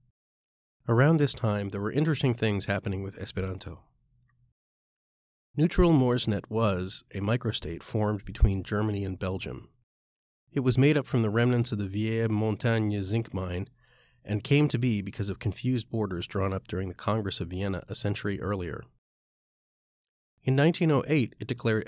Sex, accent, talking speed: male, American, 150 wpm